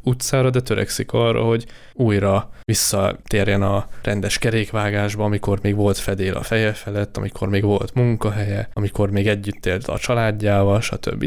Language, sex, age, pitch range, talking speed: Hungarian, male, 20-39, 100-115 Hz, 150 wpm